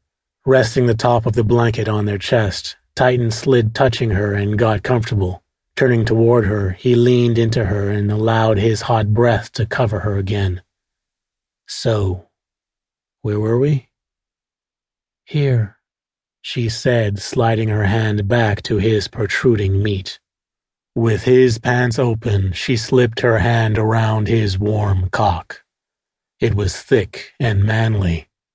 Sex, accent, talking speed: male, American, 135 wpm